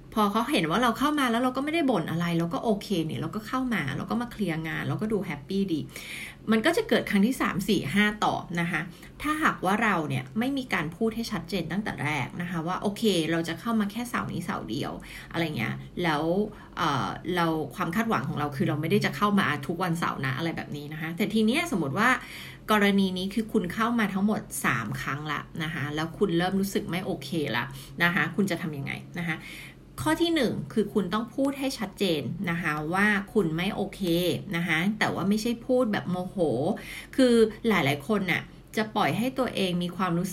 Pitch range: 160-215 Hz